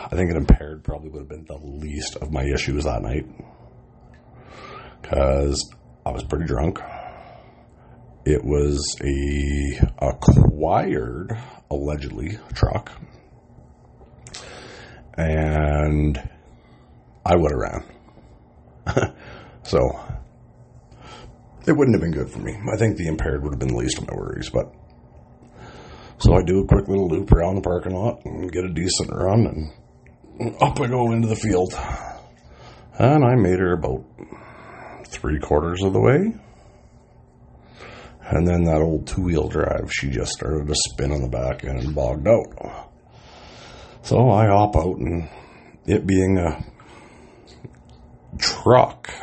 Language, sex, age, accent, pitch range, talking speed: English, male, 40-59, American, 75-105 Hz, 140 wpm